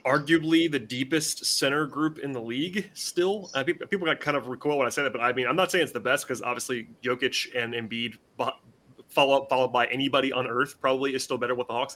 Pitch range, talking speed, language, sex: 125-150 Hz, 240 wpm, English, male